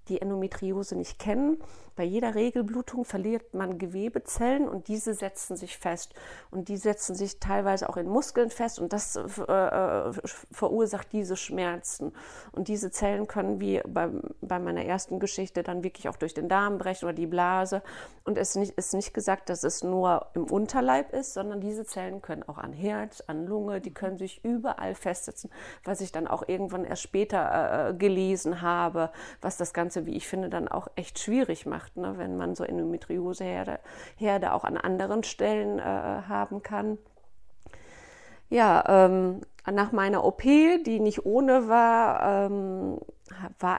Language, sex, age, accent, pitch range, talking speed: German, female, 40-59, German, 175-205 Hz, 160 wpm